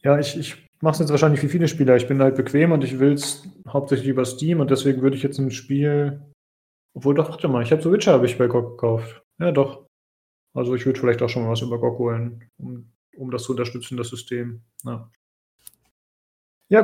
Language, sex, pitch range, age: German, male, 120-150 Hz, 30-49